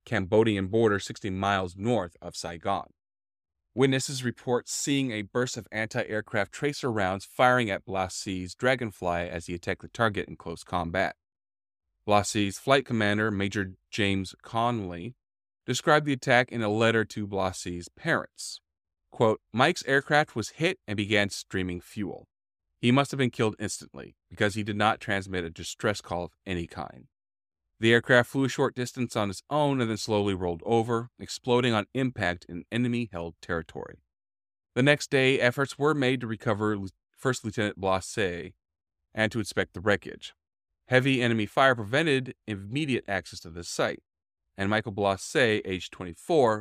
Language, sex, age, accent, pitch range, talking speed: English, male, 30-49, American, 90-120 Hz, 155 wpm